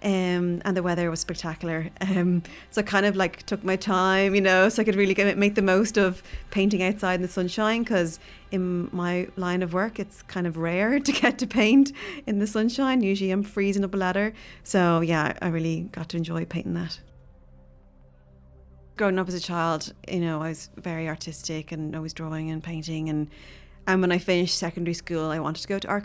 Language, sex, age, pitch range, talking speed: English, female, 30-49, 170-200 Hz, 210 wpm